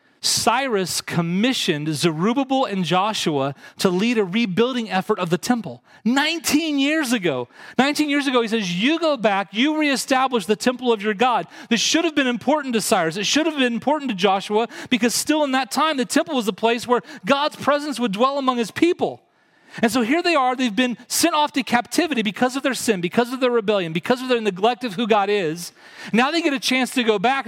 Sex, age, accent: male, 40-59, American